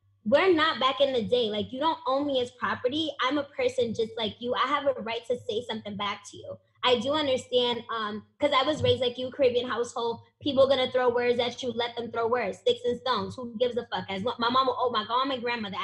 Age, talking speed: 20-39, 260 wpm